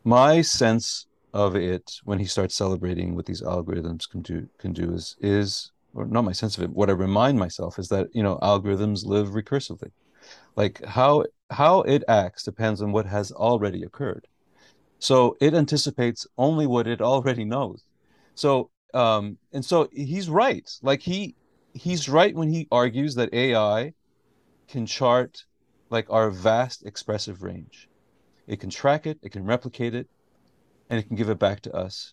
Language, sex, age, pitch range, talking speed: English, male, 40-59, 100-135 Hz, 170 wpm